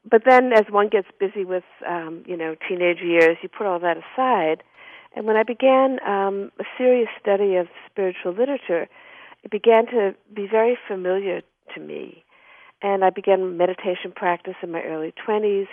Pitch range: 175-220 Hz